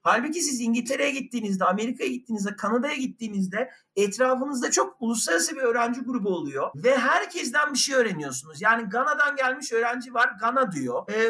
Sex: male